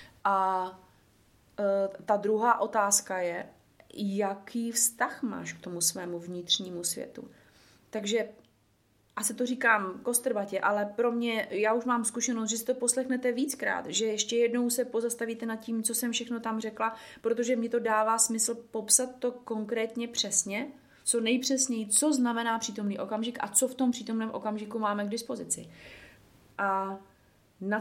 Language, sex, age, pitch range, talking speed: Slovak, female, 30-49, 190-230 Hz, 150 wpm